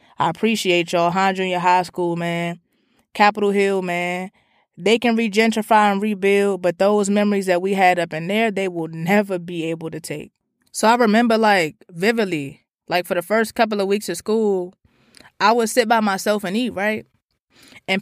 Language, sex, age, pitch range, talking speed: English, female, 20-39, 180-220 Hz, 185 wpm